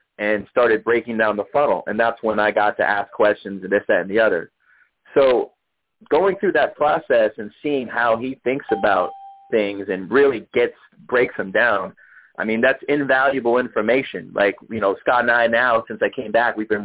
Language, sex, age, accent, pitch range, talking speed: English, male, 30-49, American, 110-155 Hz, 200 wpm